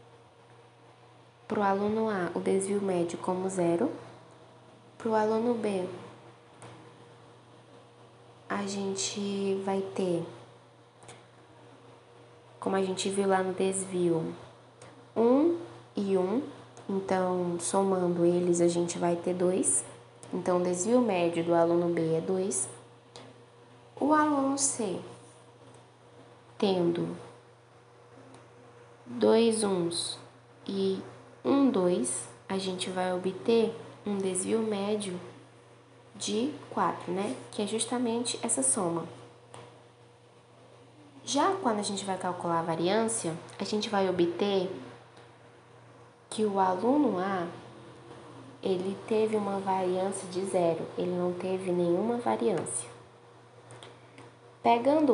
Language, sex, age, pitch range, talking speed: Portuguese, female, 10-29, 120-195 Hz, 105 wpm